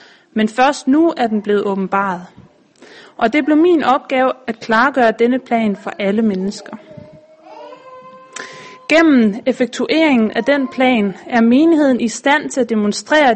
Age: 30-49